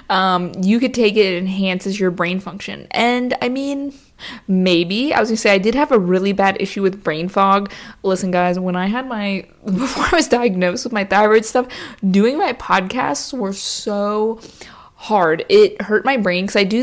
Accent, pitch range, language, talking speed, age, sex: American, 190-220 Hz, English, 195 wpm, 20-39, female